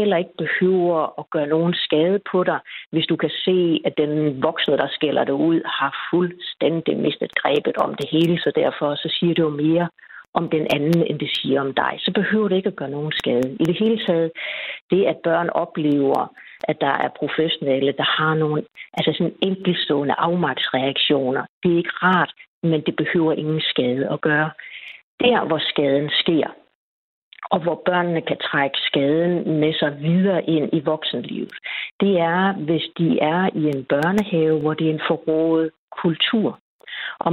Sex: female